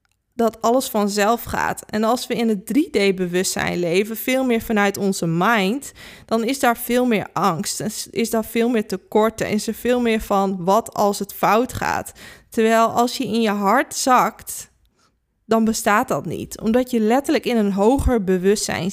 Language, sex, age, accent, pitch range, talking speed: Dutch, female, 20-39, Dutch, 205-265 Hz, 180 wpm